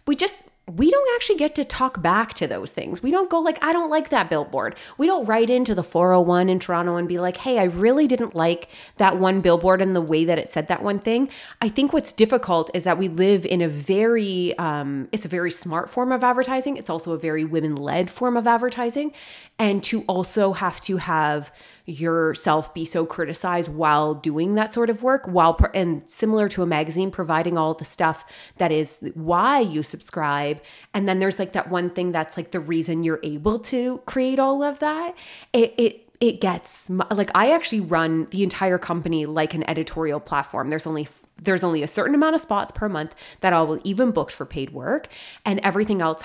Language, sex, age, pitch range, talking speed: English, female, 20-39, 165-225 Hz, 210 wpm